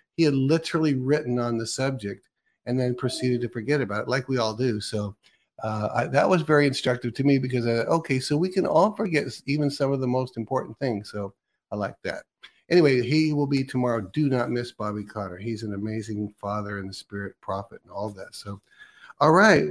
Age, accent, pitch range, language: 50-69, American, 110-140 Hz, English